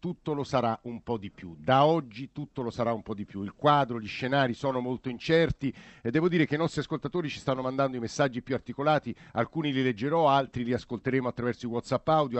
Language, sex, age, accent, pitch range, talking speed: Italian, male, 50-69, native, 120-150 Hz, 225 wpm